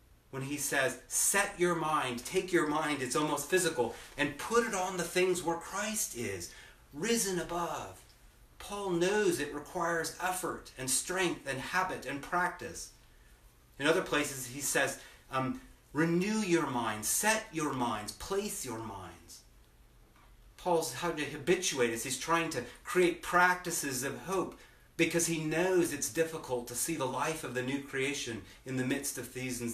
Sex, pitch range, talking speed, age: male, 120-170 Hz, 160 wpm, 30-49